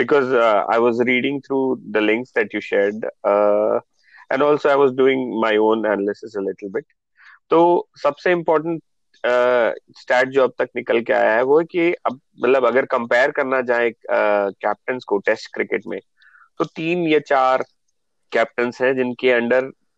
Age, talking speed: 30-49, 170 wpm